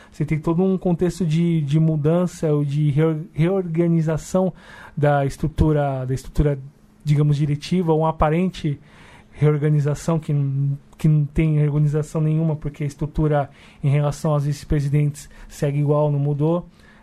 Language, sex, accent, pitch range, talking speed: Portuguese, male, Brazilian, 140-160 Hz, 135 wpm